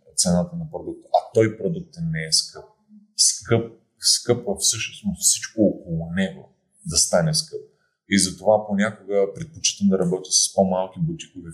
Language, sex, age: English, male, 30-49